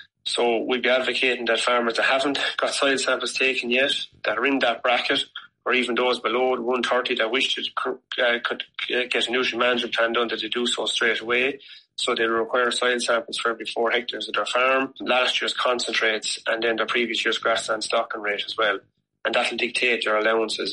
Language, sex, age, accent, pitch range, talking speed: English, male, 30-49, Irish, 115-125 Hz, 200 wpm